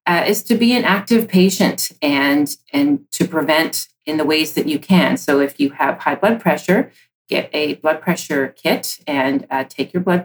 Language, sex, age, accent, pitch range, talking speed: English, female, 30-49, American, 160-200 Hz, 200 wpm